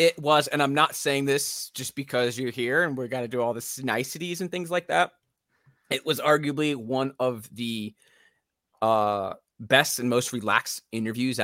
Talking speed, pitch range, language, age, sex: 185 wpm, 110-145 Hz, English, 20-39, male